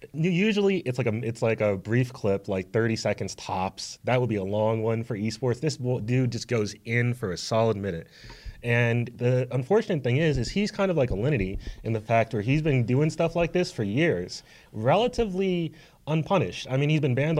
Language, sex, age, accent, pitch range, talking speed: English, male, 30-49, American, 115-140 Hz, 210 wpm